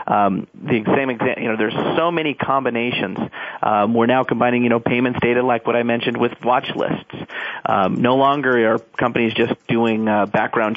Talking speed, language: 185 wpm, English